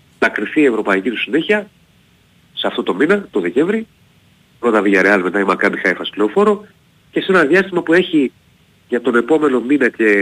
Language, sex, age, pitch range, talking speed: Greek, male, 40-59, 115-175 Hz, 170 wpm